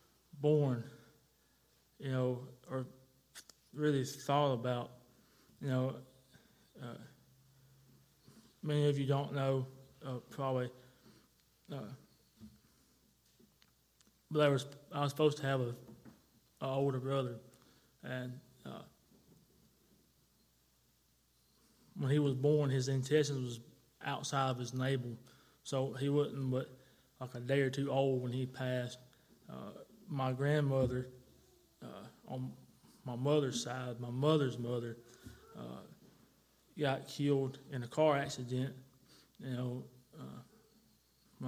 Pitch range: 125-140 Hz